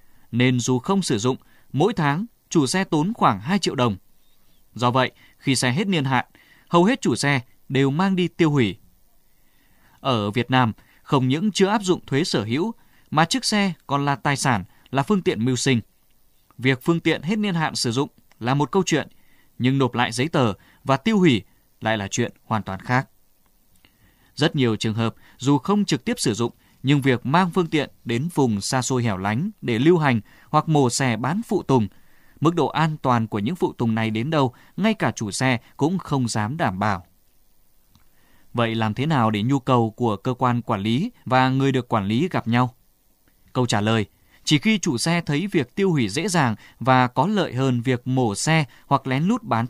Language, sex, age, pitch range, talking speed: Vietnamese, male, 20-39, 115-155 Hz, 210 wpm